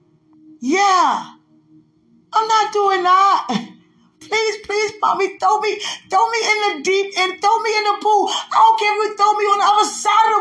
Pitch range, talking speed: 295-400 Hz, 190 wpm